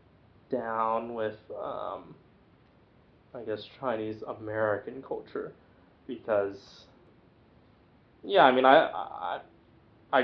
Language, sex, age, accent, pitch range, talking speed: English, male, 20-39, American, 110-135 Hz, 80 wpm